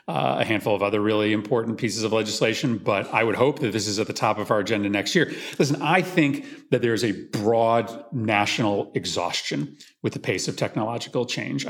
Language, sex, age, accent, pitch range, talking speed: English, male, 40-59, American, 100-125 Hz, 210 wpm